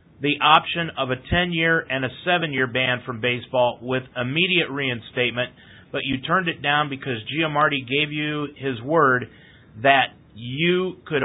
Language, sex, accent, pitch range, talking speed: English, male, American, 125-165 Hz, 150 wpm